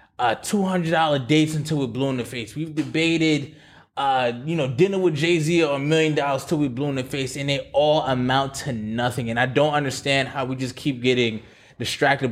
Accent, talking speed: American, 215 wpm